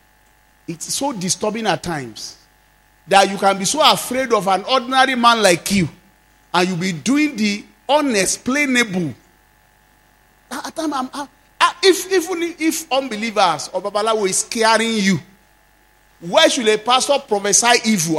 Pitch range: 170-260 Hz